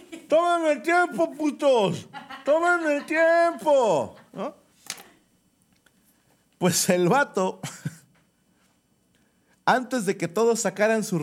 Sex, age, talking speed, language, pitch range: male, 50-69, 85 wpm, Spanish, 130-210 Hz